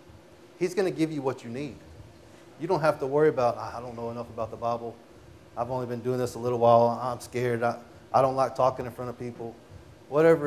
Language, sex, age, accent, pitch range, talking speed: English, male, 30-49, American, 120-145 Hz, 235 wpm